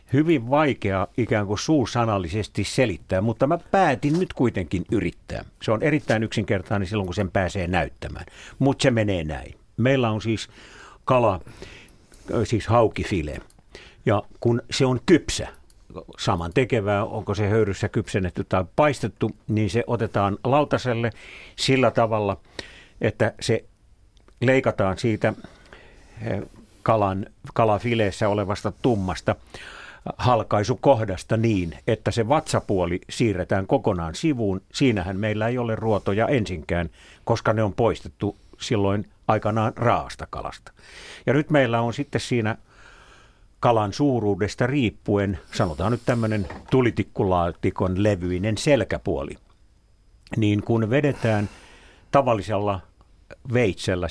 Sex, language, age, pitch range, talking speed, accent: male, Finnish, 60-79, 95-120 Hz, 110 wpm, native